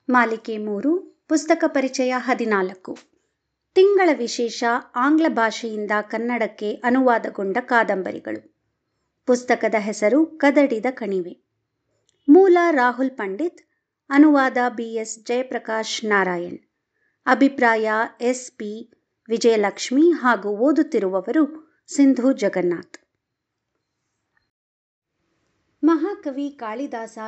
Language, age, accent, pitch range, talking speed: Kannada, 50-69, native, 220-295 Hz, 70 wpm